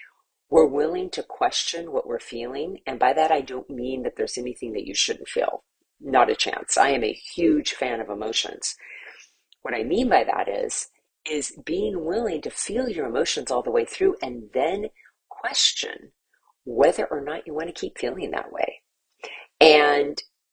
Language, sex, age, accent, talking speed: English, female, 40-59, American, 180 wpm